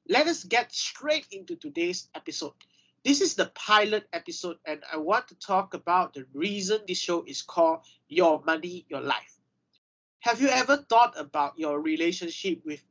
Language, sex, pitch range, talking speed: English, male, 170-265 Hz, 165 wpm